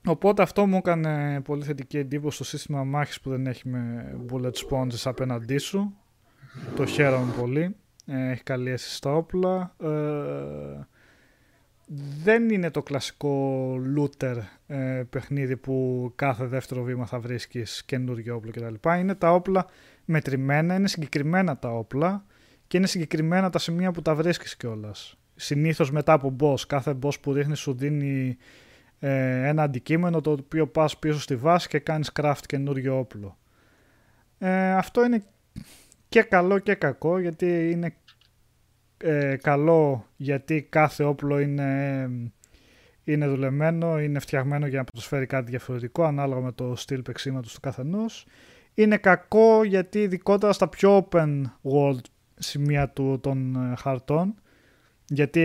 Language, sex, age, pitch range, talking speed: Greek, male, 20-39, 130-165 Hz, 135 wpm